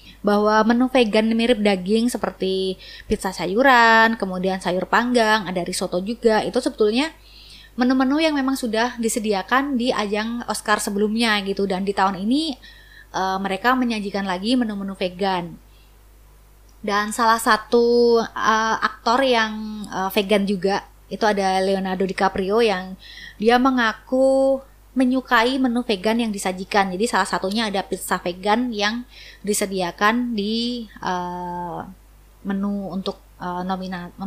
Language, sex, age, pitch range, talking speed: Indonesian, female, 20-39, 190-235 Hz, 125 wpm